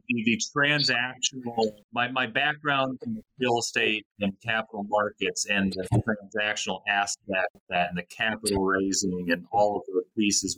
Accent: American